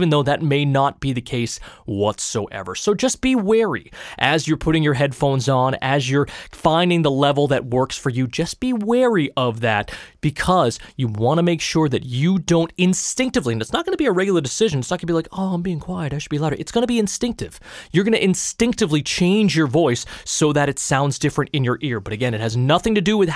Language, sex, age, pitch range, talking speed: English, male, 20-39, 125-190 Hz, 240 wpm